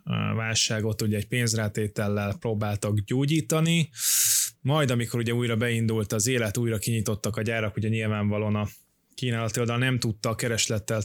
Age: 20-39